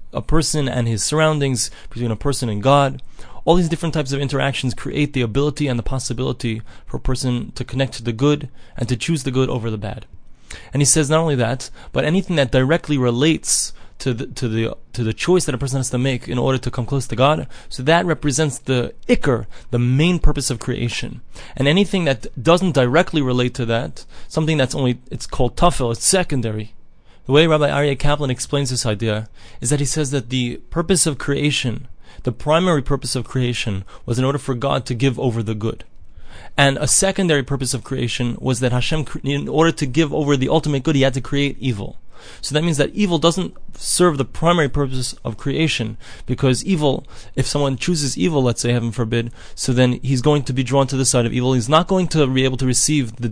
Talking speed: 215 wpm